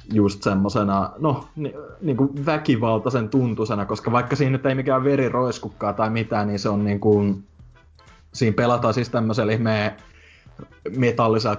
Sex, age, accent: male, 20-39, native